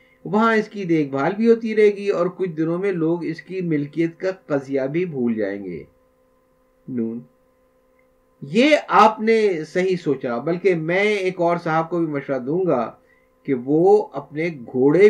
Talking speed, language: 170 wpm, Urdu